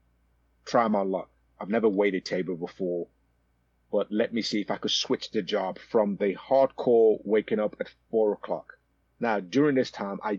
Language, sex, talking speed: English, male, 180 wpm